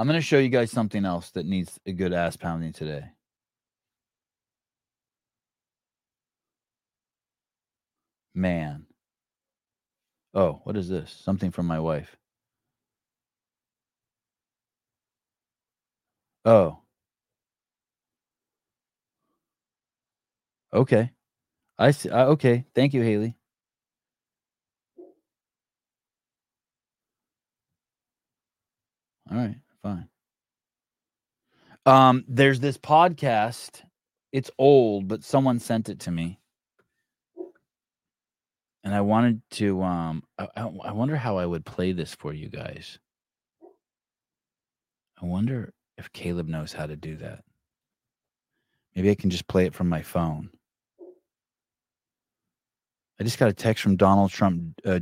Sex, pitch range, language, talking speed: male, 90-125 Hz, English, 100 wpm